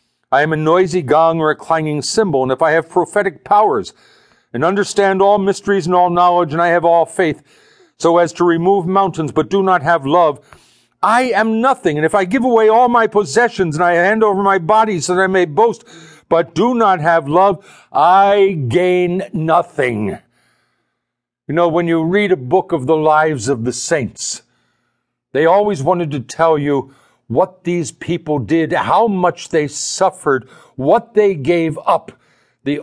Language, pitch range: English, 150-195 Hz